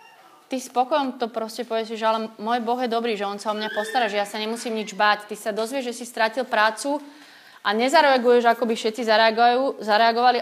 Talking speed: 220 wpm